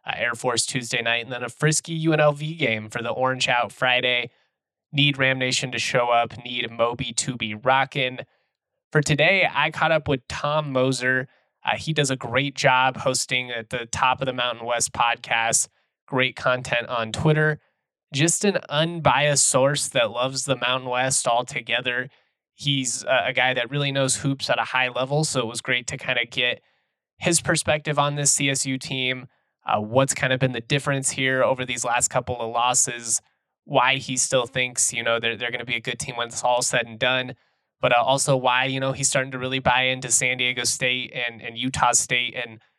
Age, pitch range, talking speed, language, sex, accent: 20-39, 125-140 Hz, 200 wpm, English, male, American